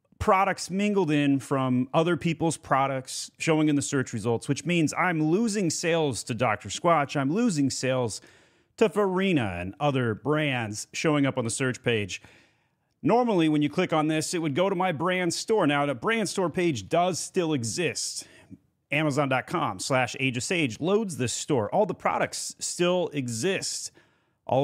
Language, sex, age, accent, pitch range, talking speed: English, male, 30-49, American, 125-170 Hz, 165 wpm